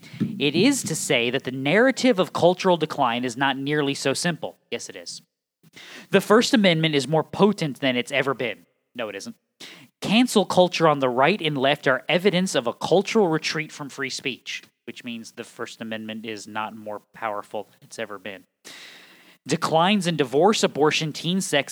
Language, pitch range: English, 115-155 Hz